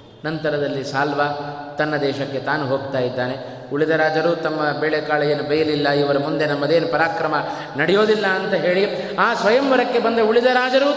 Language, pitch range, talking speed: Kannada, 145-210 Hz, 125 wpm